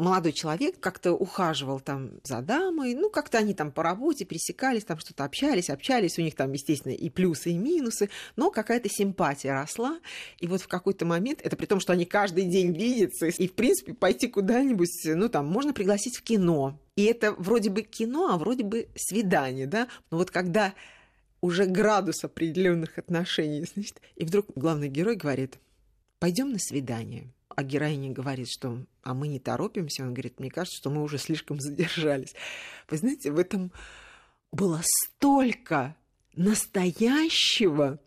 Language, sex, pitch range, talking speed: Russian, female, 155-215 Hz, 165 wpm